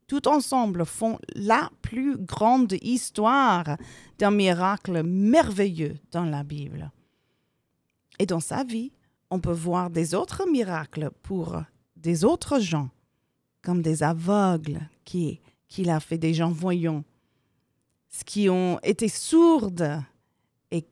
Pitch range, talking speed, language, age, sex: 155-210 Hz, 125 wpm, French, 40-59, female